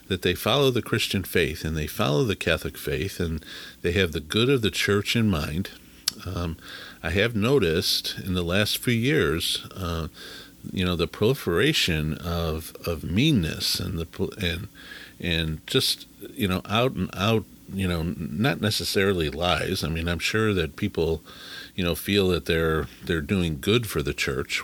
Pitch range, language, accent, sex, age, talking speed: 85-110 Hz, English, American, male, 50-69, 175 wpm